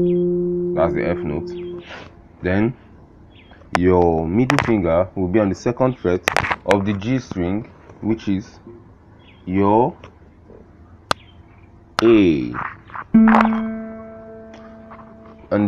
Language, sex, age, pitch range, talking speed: English, male, 30-49, 80-115 Hz, 90 wpm